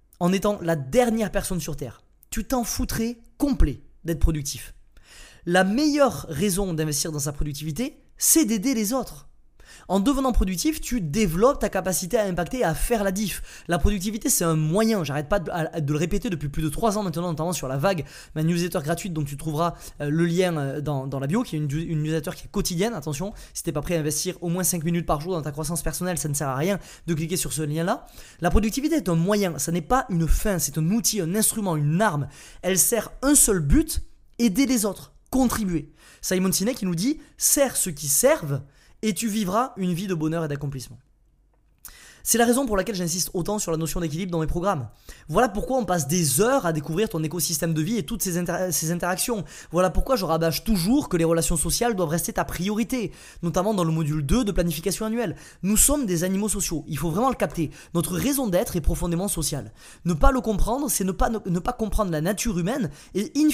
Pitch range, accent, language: 160-220 Hz, French, French